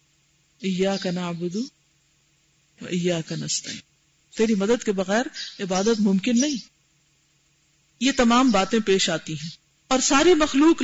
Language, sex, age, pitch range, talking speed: Urdu, female, 50-69, 155-220 Hz, 110 wpm